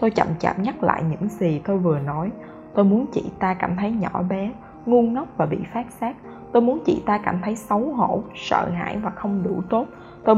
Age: 20-39